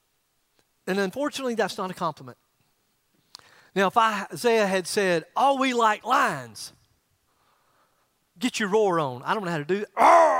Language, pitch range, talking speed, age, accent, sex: English, 165-250 Hz, 155 wpm, 40-59, American, male